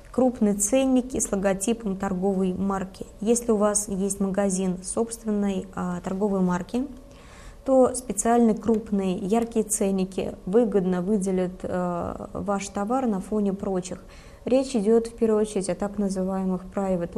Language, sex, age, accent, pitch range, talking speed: Russian, female, 20-39, native, 190-225 Hz, 130 wpm